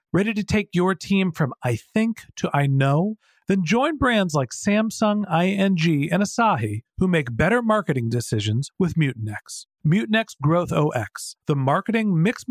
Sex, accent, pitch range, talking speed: male, American, 120-170 Hz, 155 wpm